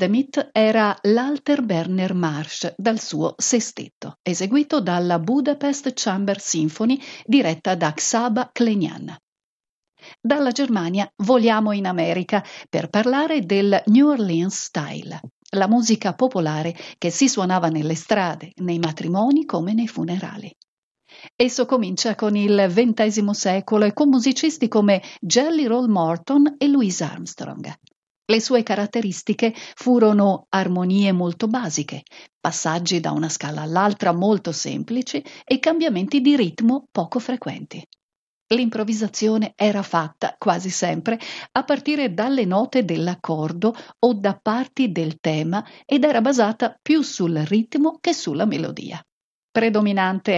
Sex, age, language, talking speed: female, 50-69, Italian, 120 wpm